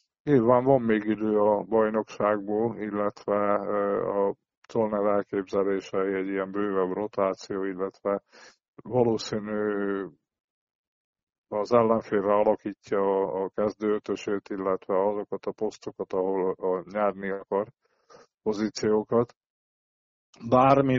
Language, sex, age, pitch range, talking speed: Hungarian, male, 20-39, 100-115 Hz, 85 wpm